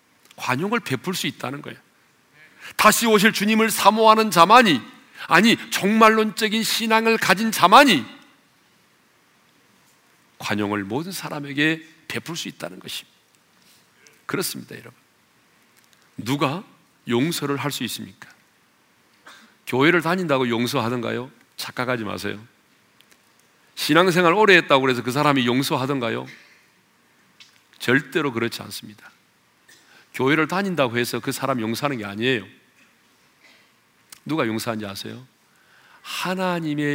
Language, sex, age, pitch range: Korean, male, 40-59, 125-205 Hz